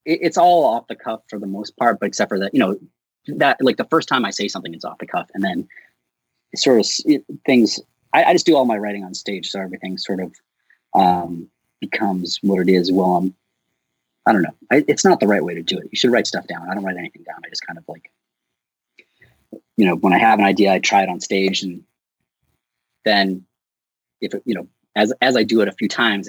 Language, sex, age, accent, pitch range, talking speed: English, male, 30-49, American, 90-110 Hz, 240 wpm